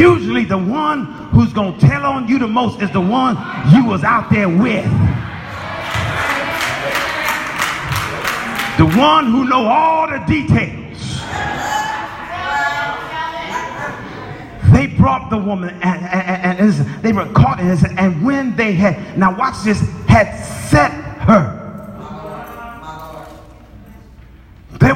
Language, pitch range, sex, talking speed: English, 125-190 Hz, male, 125 wpm